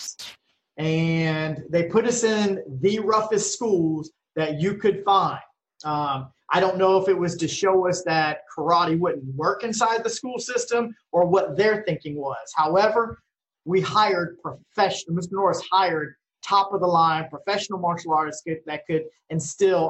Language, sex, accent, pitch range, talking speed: English, male, American, 160-205 Hz, 155 wpm